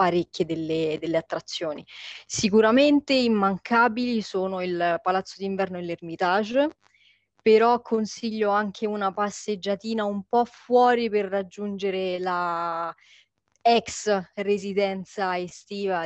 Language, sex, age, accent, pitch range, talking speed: Italian, female, 20-39, native, 185-230 Hz, 95 wpm